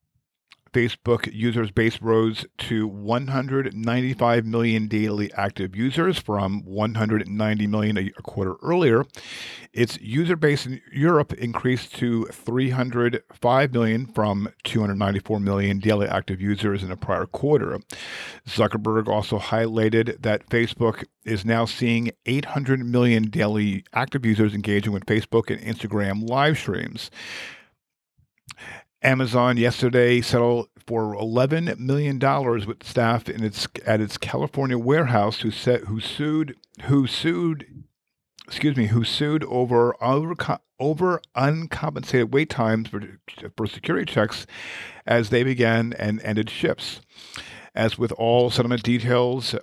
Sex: male